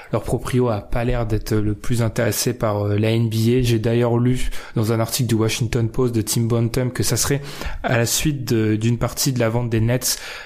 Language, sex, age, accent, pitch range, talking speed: French, male, 20-39, French, 110-135 Hz, 220 wpm